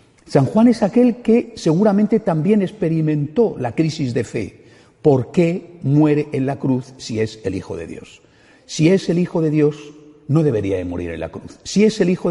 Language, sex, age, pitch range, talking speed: Spanish, male, 50-69, 120-185 Hz, 200 wpm